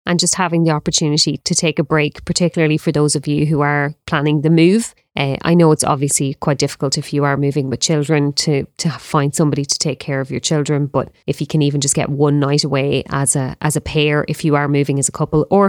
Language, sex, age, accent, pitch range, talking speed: English, female, 30-49, Irish, 140-160 Hz, 250 wpm